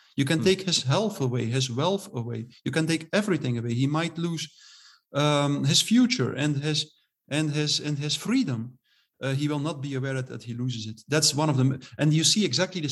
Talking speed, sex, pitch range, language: 215 wpm, male, 145-215 Hz, English